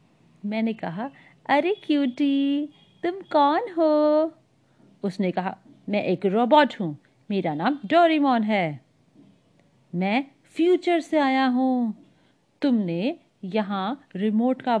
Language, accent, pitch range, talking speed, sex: Hindi, native, 205-300 Hz, 100 wpm, female